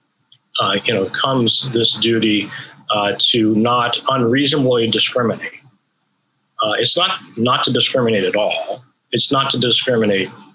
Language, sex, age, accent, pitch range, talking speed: English, male, 40-59, American, 110-140 Hz, 130 wpm